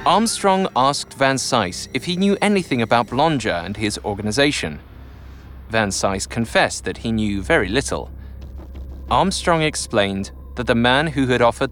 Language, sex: English, male